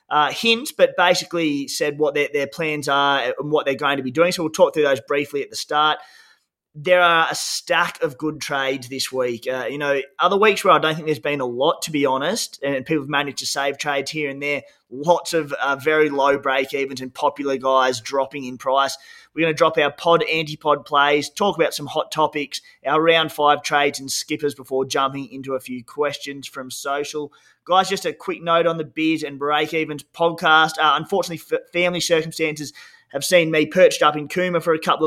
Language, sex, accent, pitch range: English, male, Australian, 140-165 Hz